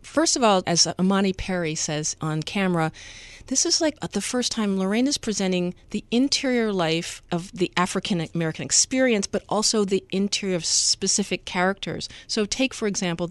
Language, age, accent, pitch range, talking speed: English, 40-59, American, 170-205 Hz, 160 wpm